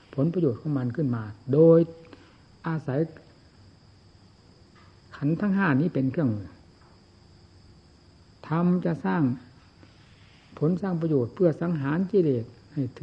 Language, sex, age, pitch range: Thai, male, 60-79, 120-160 Hz